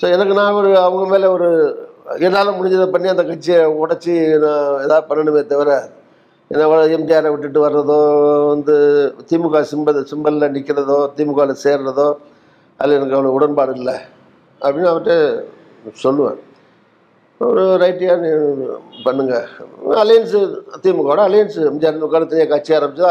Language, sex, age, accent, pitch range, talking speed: Tamil, male, 50-69, native, 145-175 Hz, 120 wpm